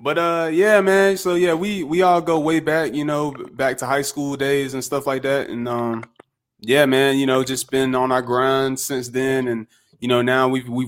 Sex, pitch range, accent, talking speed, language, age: male, 125-145 Hz, American, 230 wpm, English, 20-39